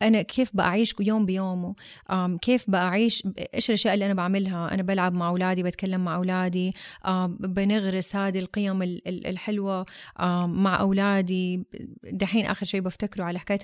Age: 20-39